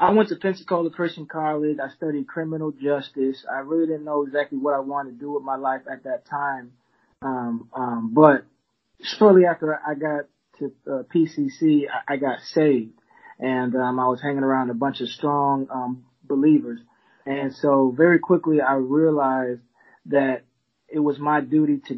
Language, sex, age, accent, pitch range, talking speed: English, male, 20-39, American, 130-155 Hz, 175 wpm